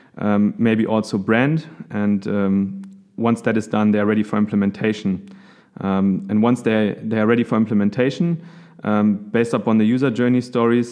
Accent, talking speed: German, 170 wpm